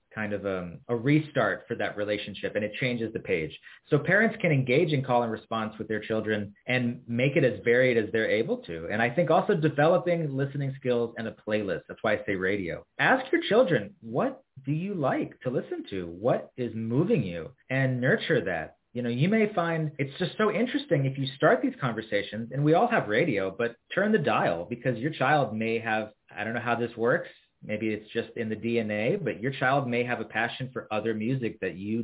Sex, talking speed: male, 220 wpm